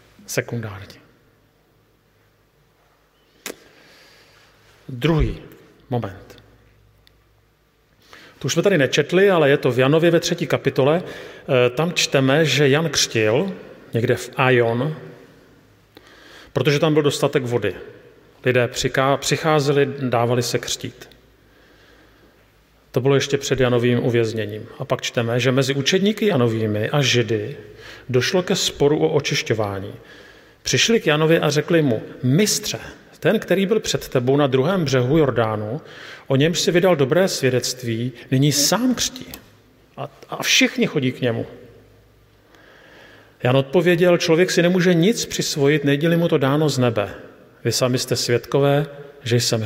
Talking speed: 125 wpm